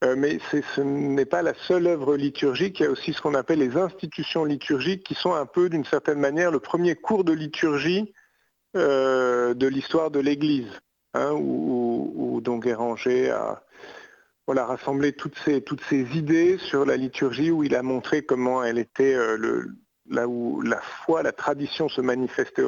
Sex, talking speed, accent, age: male, 185 wpm, French, 50-69